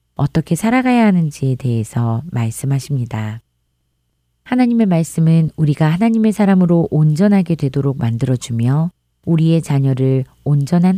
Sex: female